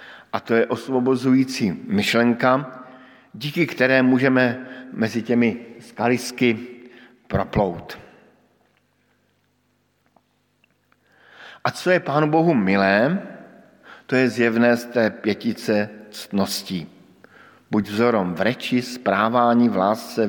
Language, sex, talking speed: Slovak, male, 90 wpm